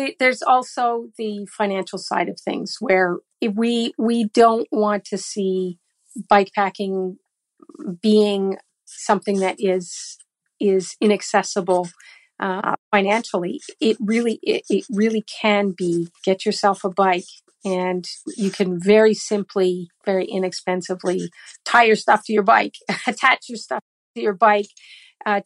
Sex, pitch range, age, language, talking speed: female, 190-220 Hz, 50-69, English, 130 wpm